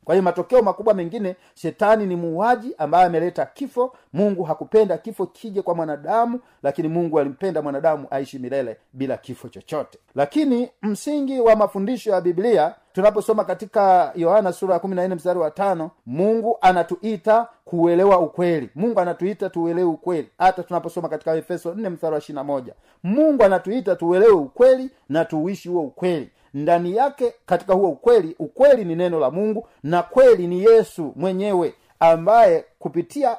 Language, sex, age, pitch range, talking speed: Swahili, male, 50-69, 170-210 Hz, 145 wpm